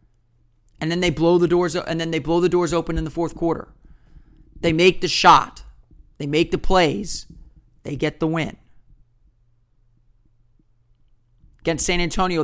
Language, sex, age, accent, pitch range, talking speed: English, male, 40-59, American, 155-190 Hz, 155 wpm